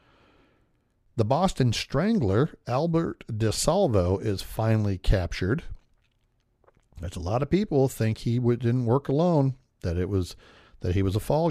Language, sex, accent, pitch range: Japanese, male, American, 95-120 Hz